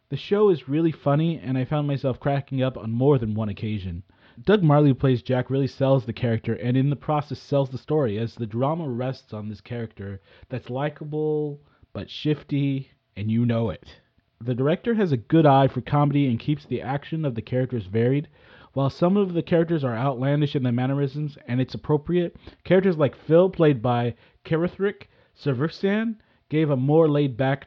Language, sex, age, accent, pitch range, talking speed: English, male, 30-49, American, 120-155 Hz, 190 wpm